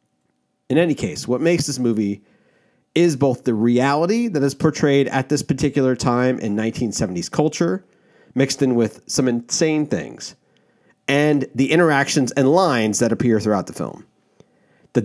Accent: American